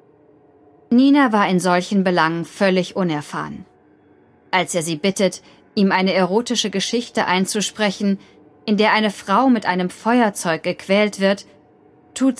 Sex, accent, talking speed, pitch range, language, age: female, German, 125 wpm, 150-215 Hz, German, 10-29